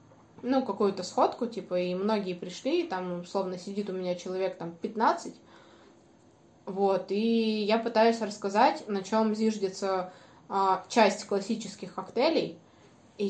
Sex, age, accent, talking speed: female, 20-39, native, 130 wpm